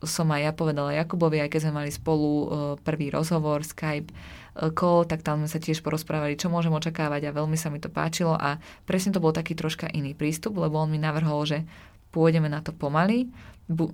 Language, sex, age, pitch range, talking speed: Czech, female, 20-39, 150-165 Hz, 210 wpm